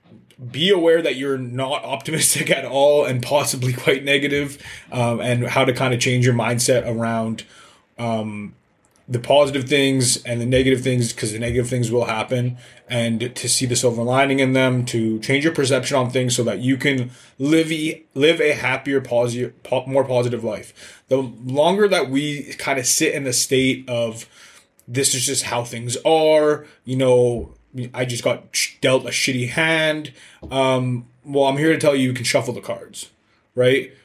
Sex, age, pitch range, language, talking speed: male, 20-39, 120-135 Hz, English, 180 wpm